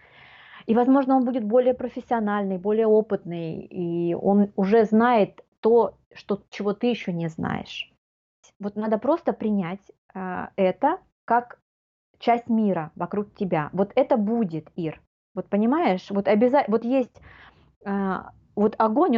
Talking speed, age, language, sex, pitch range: 130 wpm, 30-49, Ukrainian, female, 185-245 Hz